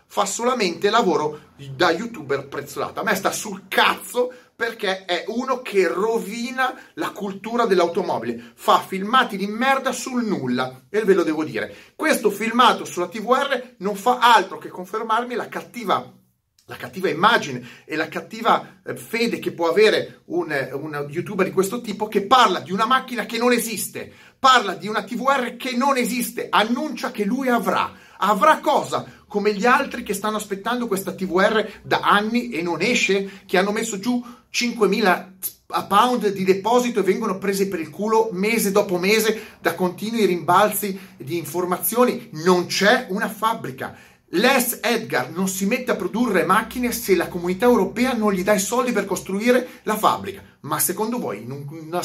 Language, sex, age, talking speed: Italian, male, 30-49, 165 wpm